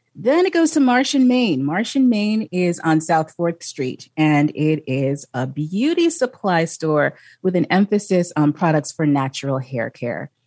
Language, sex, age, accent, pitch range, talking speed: English, female, 30-49, American, 145-185 Hz, 165 wpm